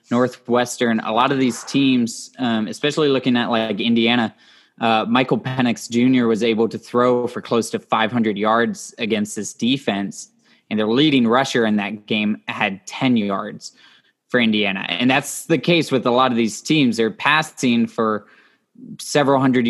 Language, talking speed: English, 170 wpm